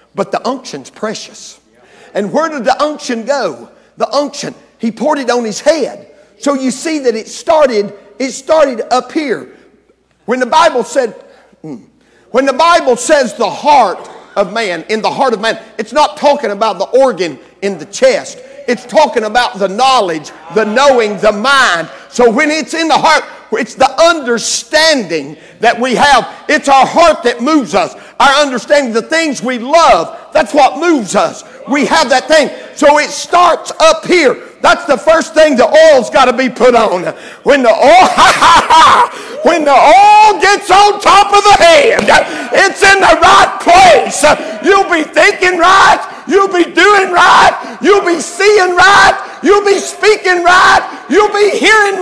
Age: 50-69